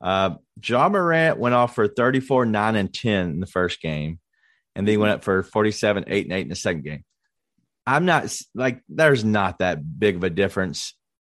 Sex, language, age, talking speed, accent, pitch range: male, English, 30-49, 200 wpm, American, 95-120 Hz